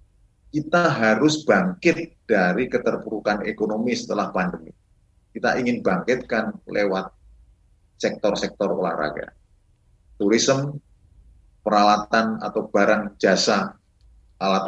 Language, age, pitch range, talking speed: Indonesian, 30-49, 95-115 Hz, 80 wpm